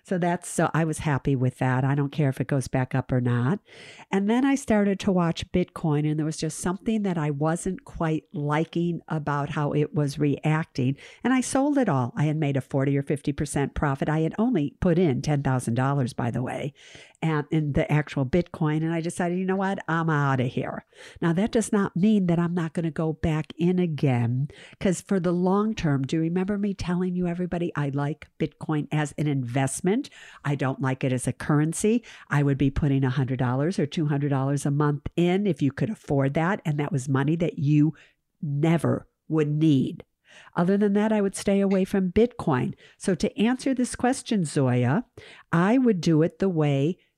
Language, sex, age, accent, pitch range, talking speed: English, female, 50-69, American, 140-190 Hz, 205 wpm